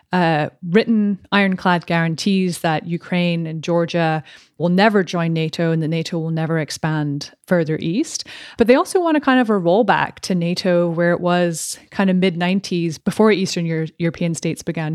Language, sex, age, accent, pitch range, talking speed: English, female, 30-49, American, 165-200 Hz, 170 wpm